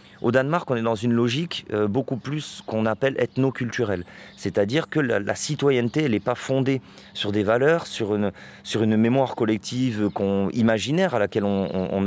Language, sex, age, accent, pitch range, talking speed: French, male, 30-49, French, 105-135 Hz, 180 wpm